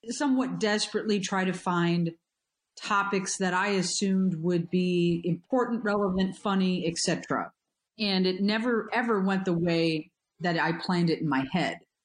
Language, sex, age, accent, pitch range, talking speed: English, female, 40-59, American, 180-220 Hz, 145 wpm